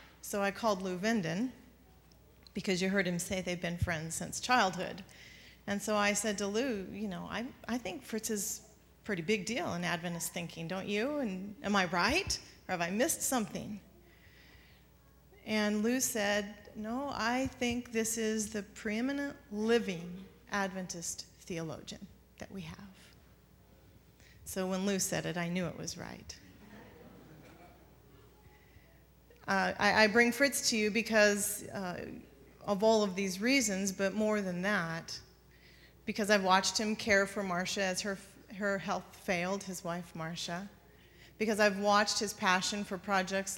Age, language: 40-59, English